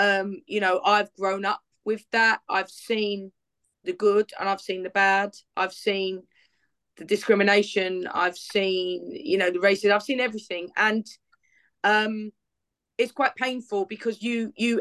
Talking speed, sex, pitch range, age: 155 wpm, female, 190-230 Hz, 30-49